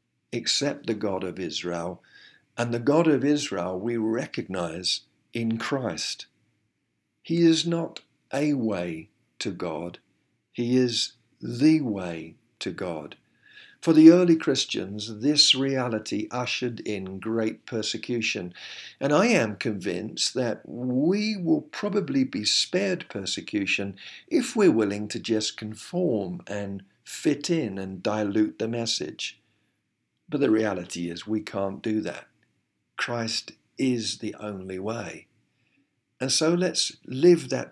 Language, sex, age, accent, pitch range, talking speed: English, male, 50-69, British, 105-145 Hz, 125 wpm